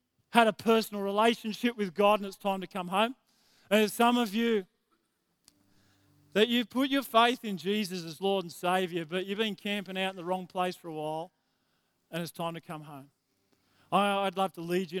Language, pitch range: English, 165-195 Hz